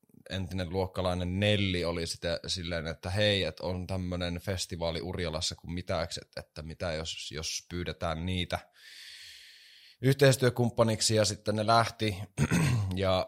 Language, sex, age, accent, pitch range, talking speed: Finnish, male, 20-39, native, 90-115 Hz, 125 wpm